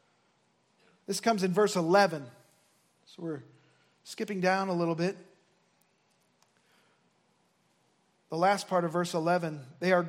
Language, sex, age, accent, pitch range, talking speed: English, male, 40-59, American, 185-235 Hz, 120 wpm